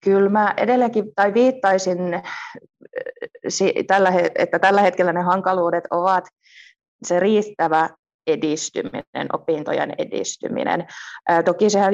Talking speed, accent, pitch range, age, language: 90 wpm, native, 160-190 Hz, 20-39, Finnish